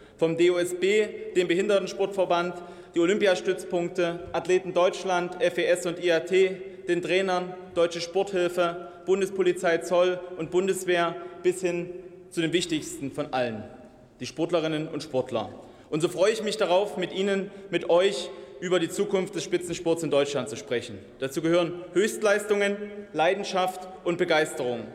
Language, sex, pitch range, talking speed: German, male, 160-185 Hz, 130 wpm